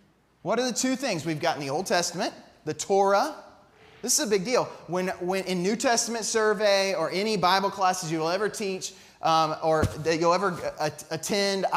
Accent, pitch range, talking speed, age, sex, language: American, 155-195 Hz, 200 wpm, 20-39, male, English